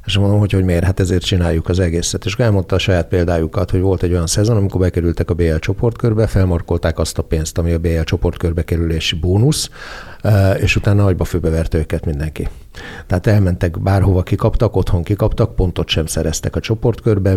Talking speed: 175 wpm